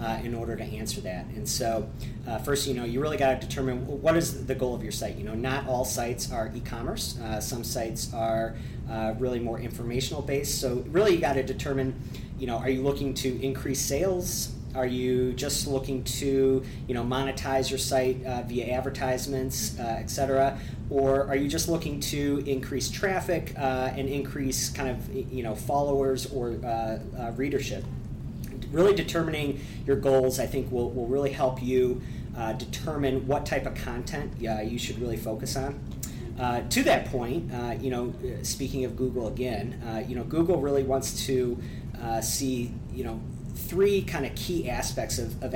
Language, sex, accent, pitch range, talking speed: English, male, American, 120-135 Hz, 185 wpm